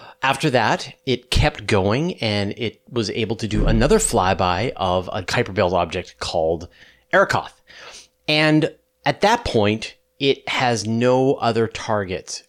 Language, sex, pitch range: English, male, 100-135 Hz